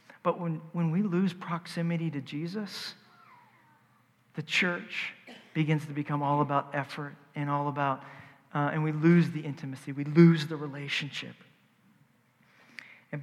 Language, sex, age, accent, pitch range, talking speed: English, male, 40-59, American, 135-155 Hz, 135 wpm